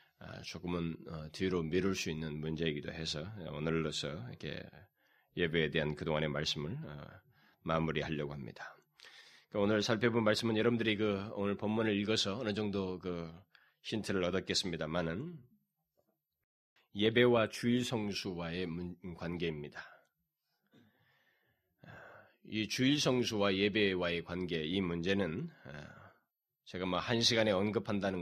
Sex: male